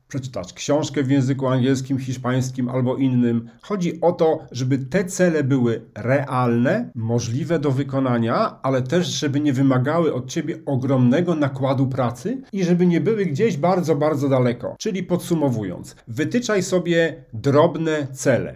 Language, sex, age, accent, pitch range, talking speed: Polish, male, 40-59, native, 125-160 Hz, 140 wpm